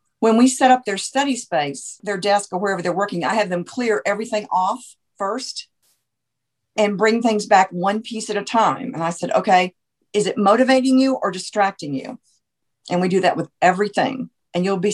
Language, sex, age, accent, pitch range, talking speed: English, female, 50-69, American, 180-220 Hz, 195 wpm